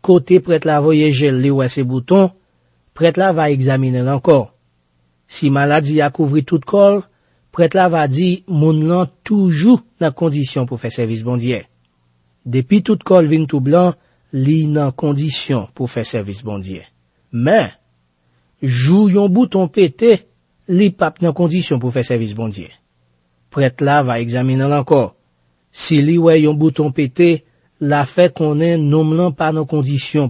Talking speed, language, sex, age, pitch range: 155 wpm, French, male, 40-59, 120-160 Hz